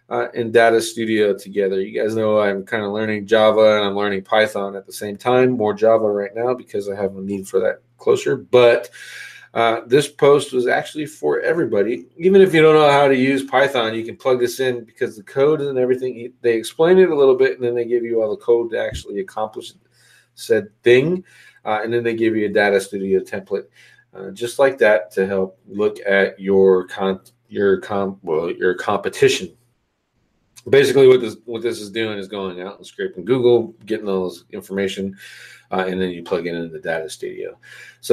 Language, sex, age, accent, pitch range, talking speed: English, male, 40-59, American, 105-165 Hz, 210 wpm